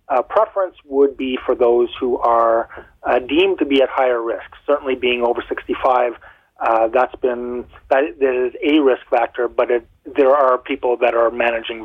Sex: male